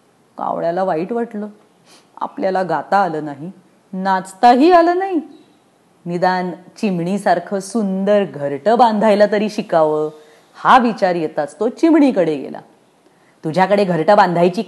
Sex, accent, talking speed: female, Indian, 100 wpm